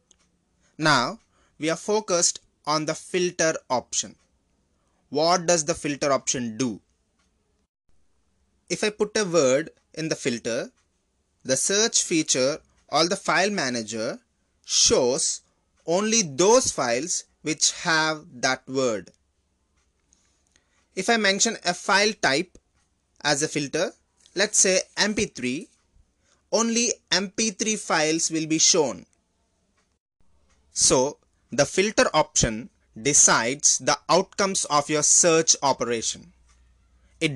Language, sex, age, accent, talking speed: English, male, 20-39, Indian, 110 wpm